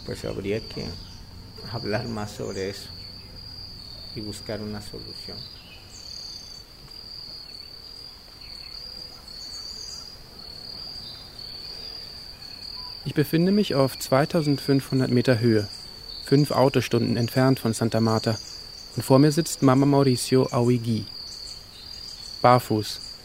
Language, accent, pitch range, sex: German, German, 105-140 Hz, male